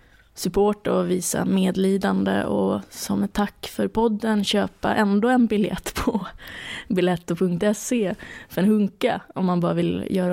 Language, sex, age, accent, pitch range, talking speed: Swedish, female, 20-39, native, 180-225 Hz, 140 wpm